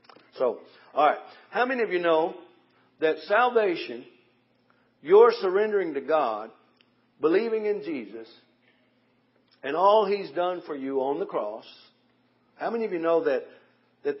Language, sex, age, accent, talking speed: English, male, 50-69, American, 140 wpm